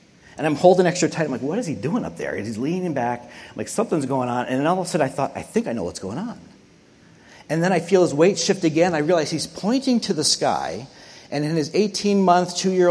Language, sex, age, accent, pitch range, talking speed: English, male, 30-49, American, 140-205 Hz, 275 wpm